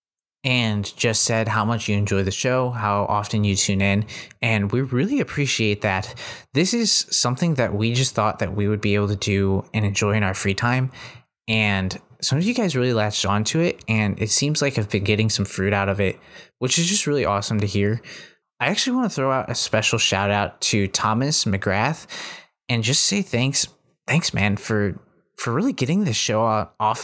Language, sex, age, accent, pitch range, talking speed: English, male, 20-39, American, 100-125 Hz, 205 wpm